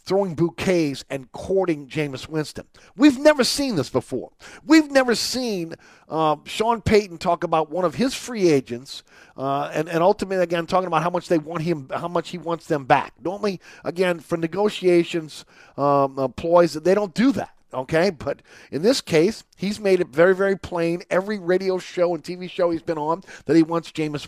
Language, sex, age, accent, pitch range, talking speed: English, male, 40-59, American, 155-210 Hz, 190 wpm